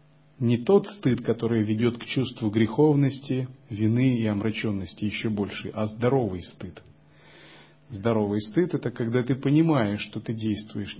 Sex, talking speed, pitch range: male, 135 wpm, 105-140 Hz